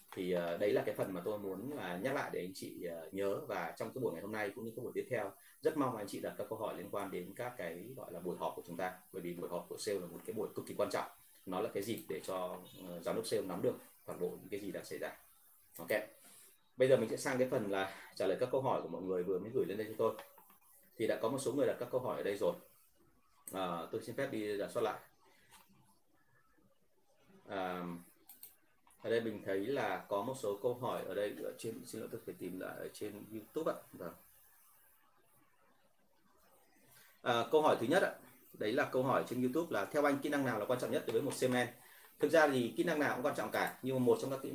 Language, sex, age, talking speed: Vietnamese, male, 30-49, 260 wpm